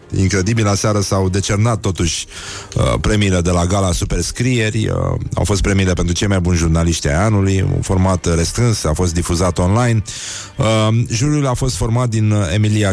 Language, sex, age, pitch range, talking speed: Romanian, male, 30-49, 85-110 Hz, 170 wpm